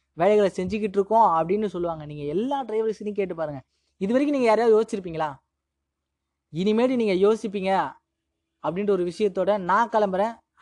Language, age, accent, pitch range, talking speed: Tamil, 20-39, native, 175-225 Hz, 130 wpm